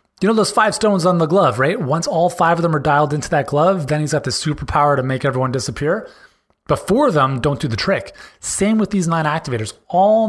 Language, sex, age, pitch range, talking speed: English, male, 30-49, 125-175 Hz, 245 wpm